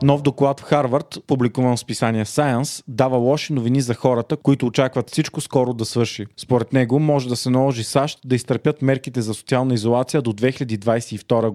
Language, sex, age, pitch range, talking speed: Bulgarian, male, 30-49, 120-145 Hz, 175 wpm